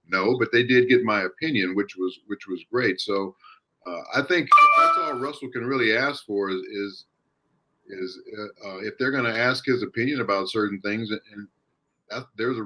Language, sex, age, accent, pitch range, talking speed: English, male, 50-69, American, 100-125 Hz, 200 wpm